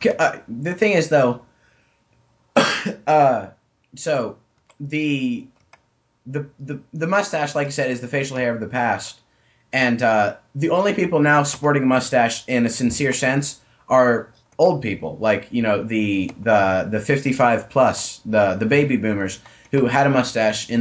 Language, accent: English, American